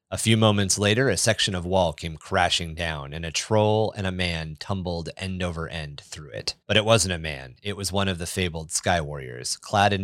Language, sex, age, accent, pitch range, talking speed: English, male, 30-49, American, 85-100 Hz, 225 wpm